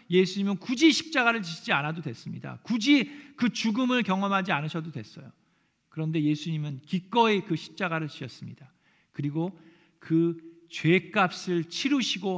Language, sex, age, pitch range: Korean, male, 40-59, 145-185 Hz